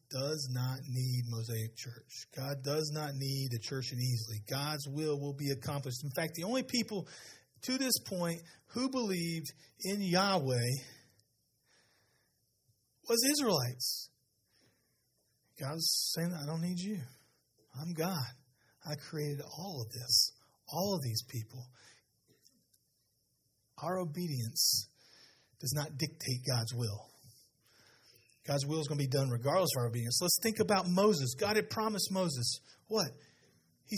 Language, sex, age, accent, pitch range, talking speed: English, male, 40-59, American, 125-175 Hz, 140 wpm